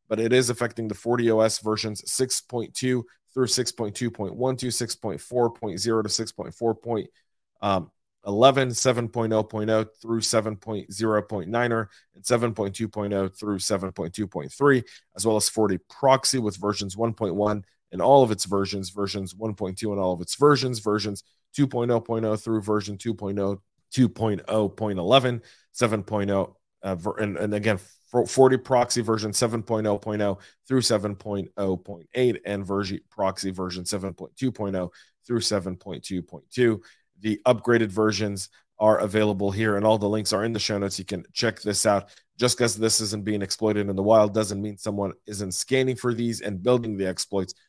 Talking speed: 130 wpm